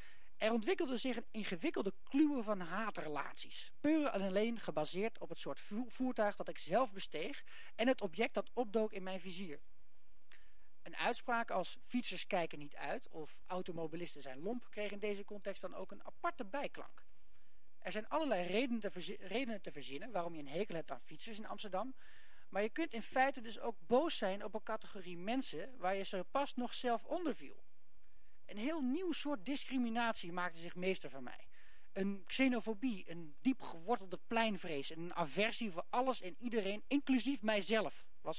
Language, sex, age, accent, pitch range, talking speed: Dutch, male, 40-59, Dutch, 180-245 Hz, 170 wpm